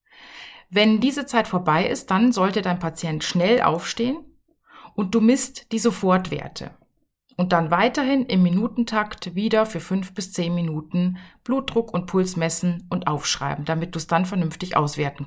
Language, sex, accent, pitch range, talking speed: German, female, German, 170-225 Hz, 155 wpm